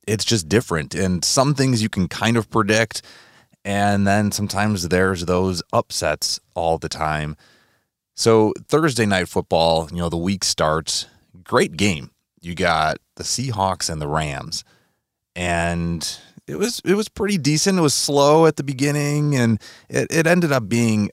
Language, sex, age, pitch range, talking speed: English, male, 30-49, 90-120 Hz, 160 wpm